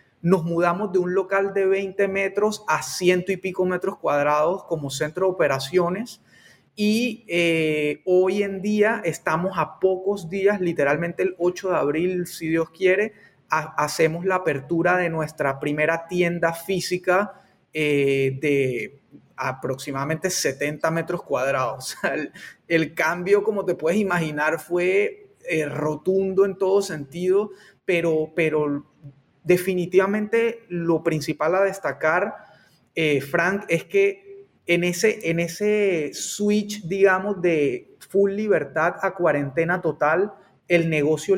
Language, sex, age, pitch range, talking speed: Spanish, male, 30-49, 155-195 Hz, 125 wpm